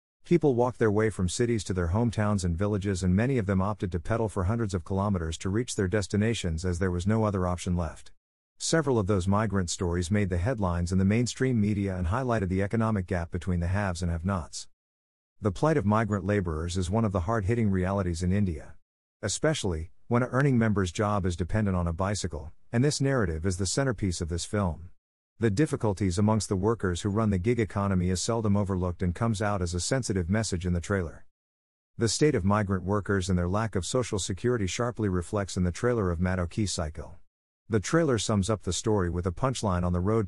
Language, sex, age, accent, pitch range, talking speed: English, male, 50-69, American, 90-110 Hz, 210 wpm